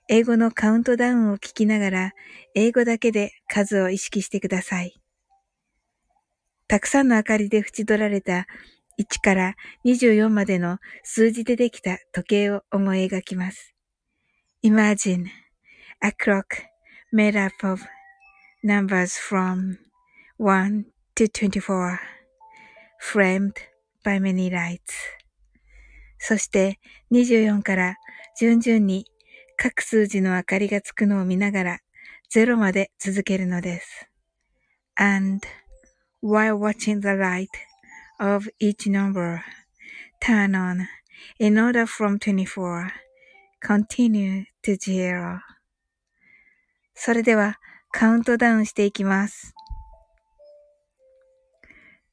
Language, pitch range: Japanese, 195-235 Hz